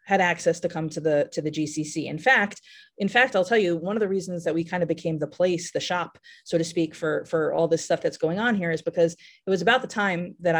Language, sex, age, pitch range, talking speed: English, female, 30-49, 165-225 Hz, 275 wpm